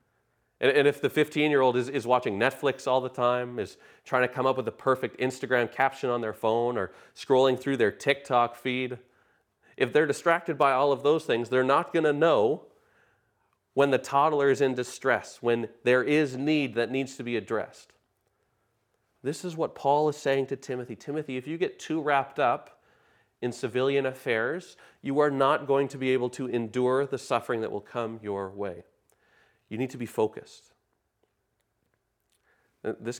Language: English